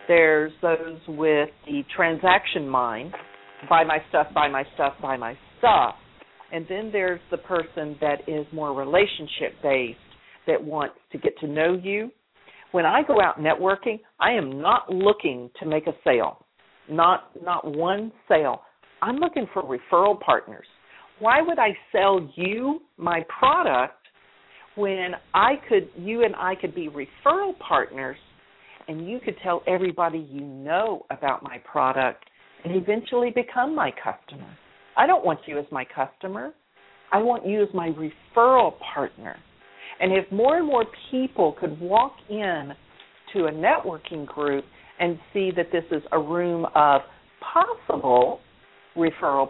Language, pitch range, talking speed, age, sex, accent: English, 150-210 Hz, 150 wpm, 50-69, female, American